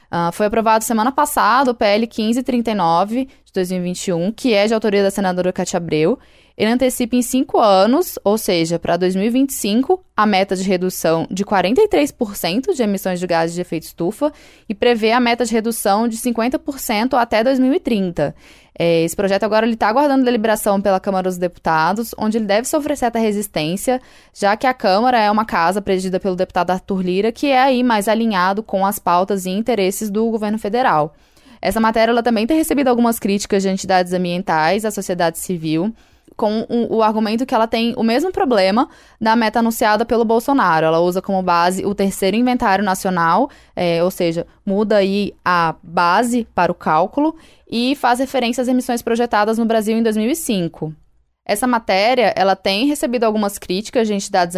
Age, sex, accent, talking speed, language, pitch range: 10-29, female, Brazilian, 170 wpm, Portuguese, 185-240 Hz